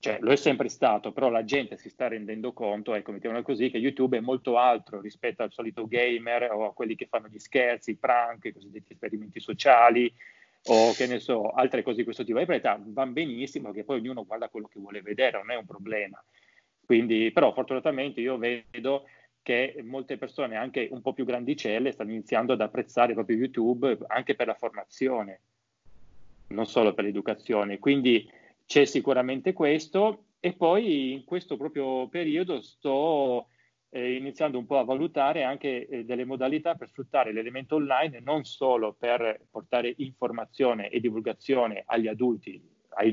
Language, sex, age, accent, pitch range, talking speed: Italian, male, 30-49, native, 115-140 Hz, 175 wpm